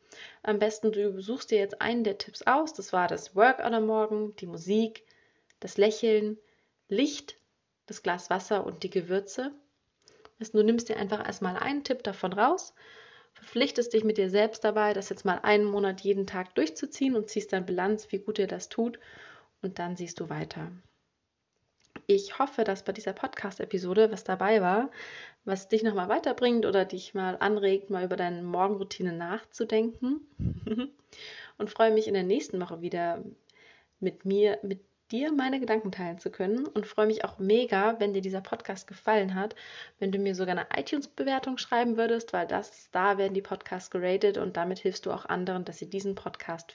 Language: German